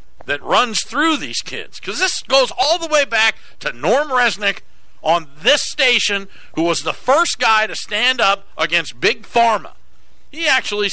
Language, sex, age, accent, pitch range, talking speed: English, male, 60-79, American, 170-245 Hz, 170 wpm